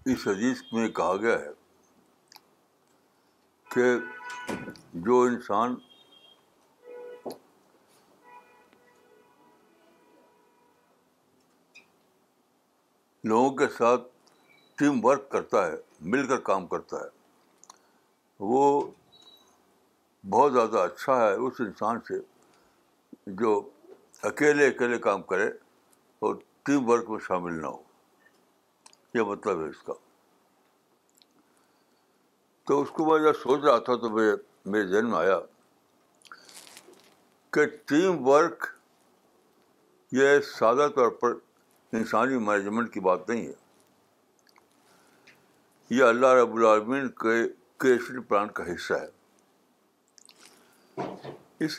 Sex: male